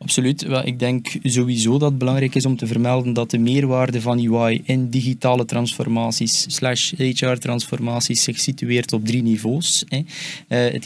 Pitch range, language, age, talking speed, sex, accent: 125-150 Hz, Dutch, 20-39, 150 wpm, male, Dutch